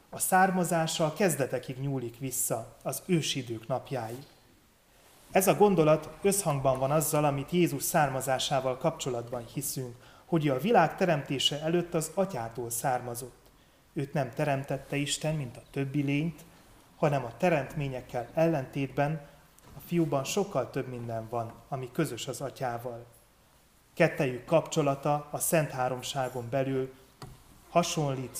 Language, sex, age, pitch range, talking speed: Hungarian, male, 30-49, 125-160 Hz, 120 wpm